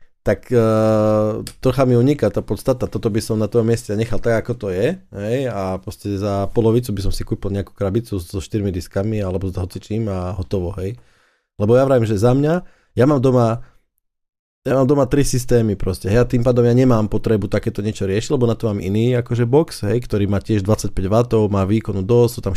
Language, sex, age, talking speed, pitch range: Slovak, male, 20-39, 215 wpm, 100-120 Hz